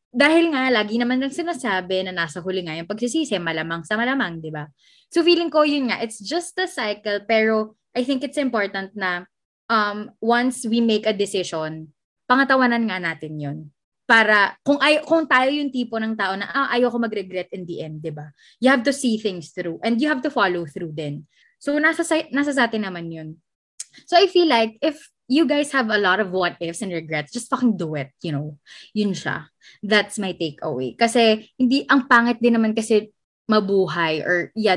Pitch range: 175-260 Hz